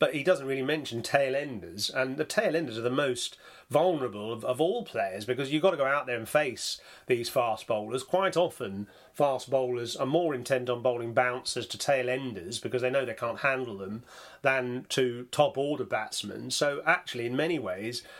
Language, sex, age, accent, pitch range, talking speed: English, male, 30-49, British, 120-145 Hz, 190 wpm